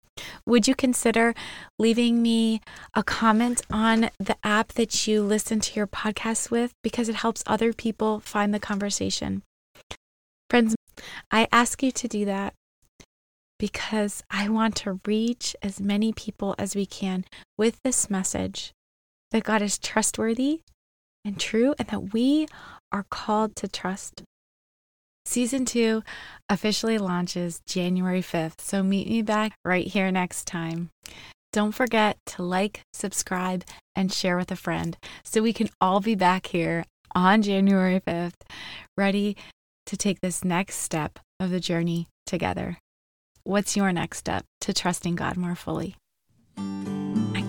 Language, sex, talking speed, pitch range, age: English, female, 145 wpm, 175-225 Hz, 20-39